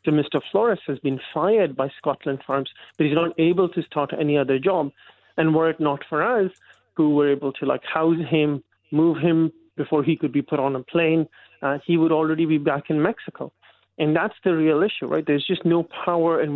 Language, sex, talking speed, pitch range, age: English, male, 215 wpm, 140-165 Hz, 30-49